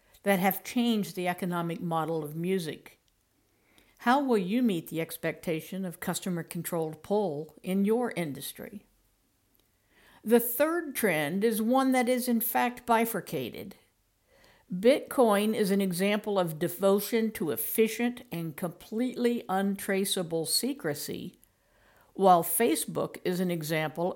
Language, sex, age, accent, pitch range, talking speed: English, female, 60-79, American, 170-225 Hz, 115 wpm